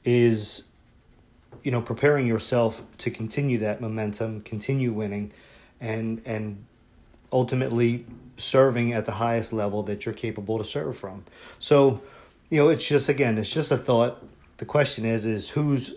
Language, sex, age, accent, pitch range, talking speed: English, male, 40-59, American, 110-125 Hz, 150 wpm